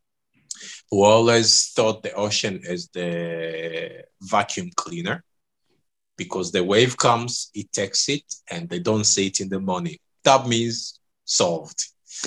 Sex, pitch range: male, 95-120 Hz